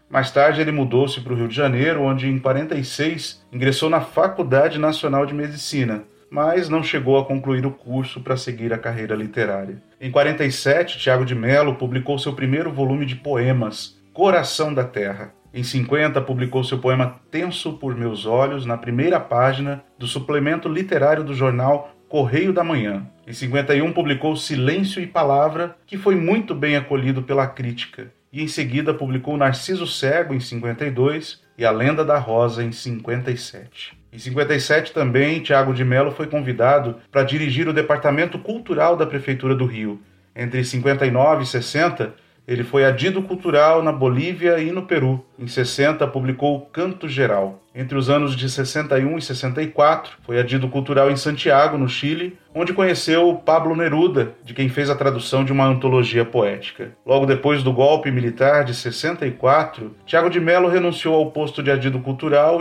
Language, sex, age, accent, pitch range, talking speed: Portuguese, male, 40-59, Brazilian, 130-155 Hz, 165 wpm